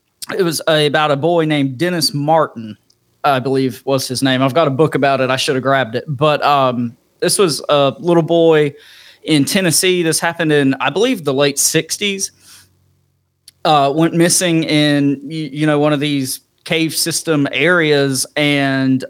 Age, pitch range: 30-49, 135-160 Hz